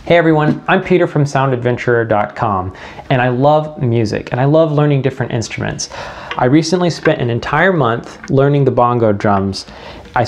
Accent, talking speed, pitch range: American, 160 wpm, 120-150 Hz